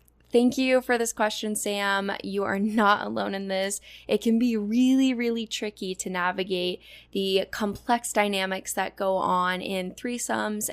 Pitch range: 185-230 Hz